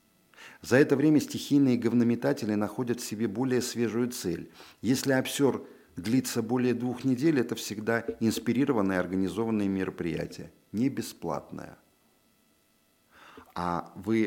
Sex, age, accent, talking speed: male, 50-69, native, 105 wpm